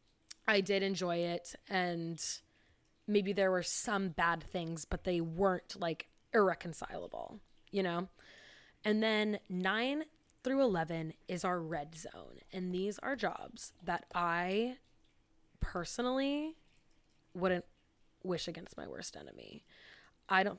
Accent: American